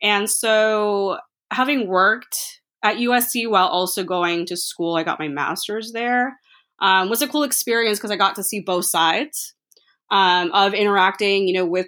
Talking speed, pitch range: 170 wpm, 180-235 Hz